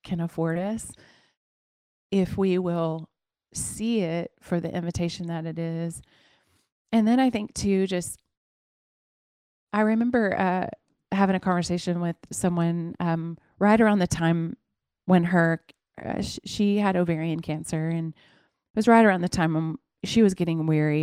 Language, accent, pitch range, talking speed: English, American, 160-185 Hz, 150 wpm